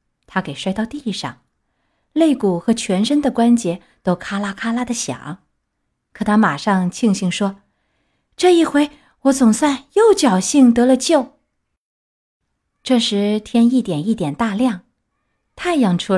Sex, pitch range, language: female, 200-270 Hz, Chinese